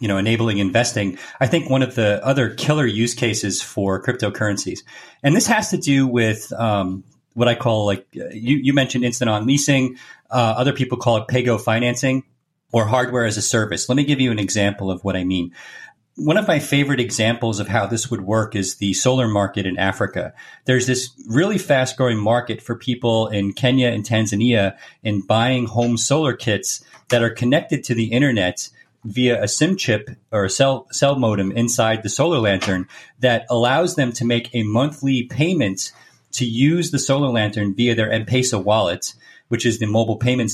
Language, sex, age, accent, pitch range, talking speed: English, male, 30-49, American, 105-130 Hz, 190 wpm